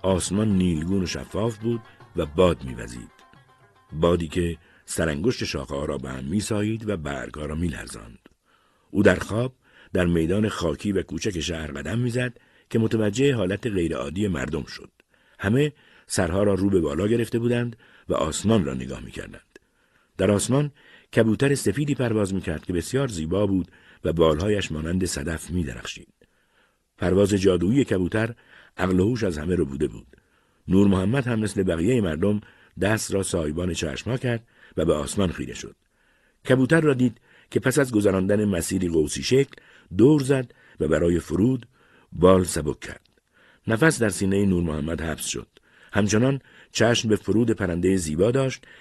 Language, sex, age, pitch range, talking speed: Persian, male, 50-69, 85-115 Hz, 150 wpm